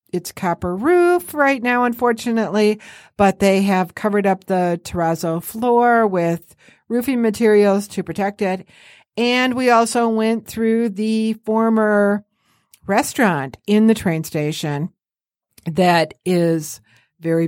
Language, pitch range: English, 170-225 Hz